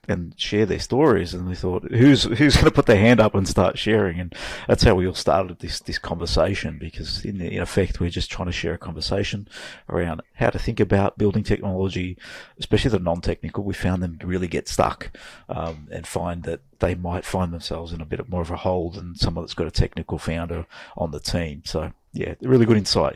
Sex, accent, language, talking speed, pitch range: male, Australian, English, 220 wpm, 85-105 Hz